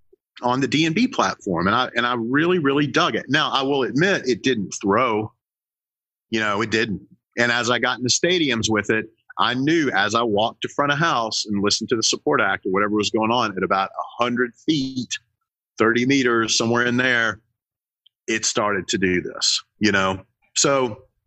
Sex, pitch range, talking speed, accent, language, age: male, 100-135 Hz, 200 wpm, American, English, 40-59